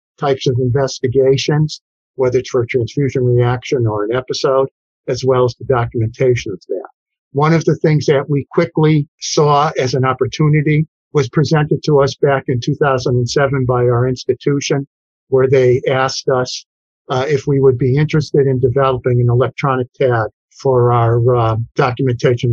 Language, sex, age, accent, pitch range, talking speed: English, male, 50-69, American, 125-150 Hz, 155 wpm